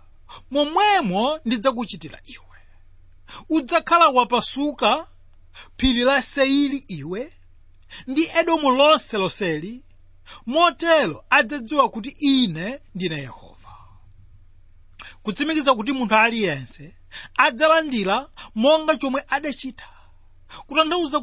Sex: male